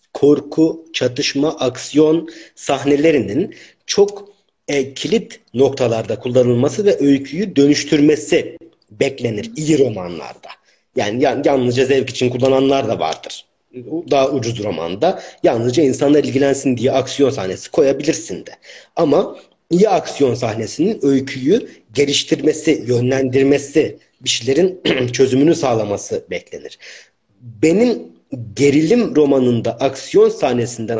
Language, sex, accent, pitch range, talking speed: Turkish, male, native, 125-160 Hz, 95 wpm